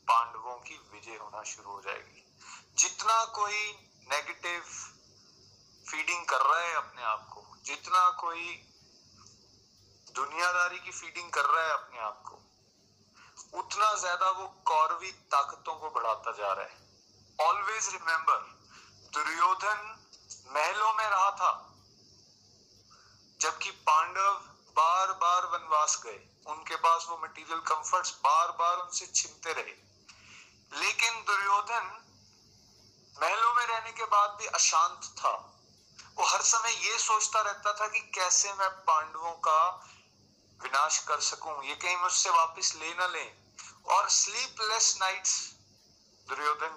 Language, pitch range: Hindi, 145-200 Hz